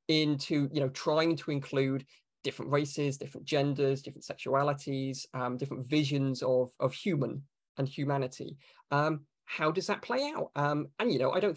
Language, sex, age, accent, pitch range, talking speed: English, male, 20-39, British, 135-165 Hz, 165 wpm